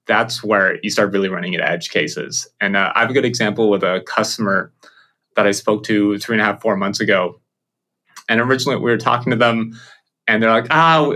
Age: 20-39